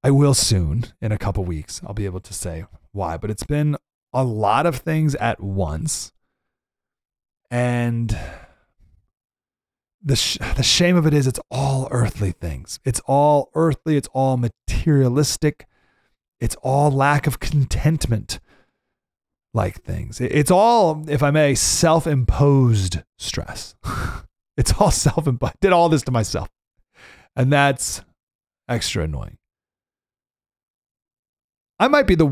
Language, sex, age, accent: English, male, 30-49, American